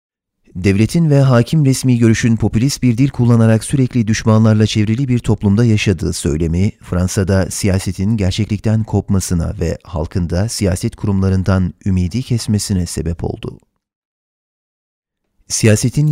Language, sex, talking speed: Turkish, male, 110 wpm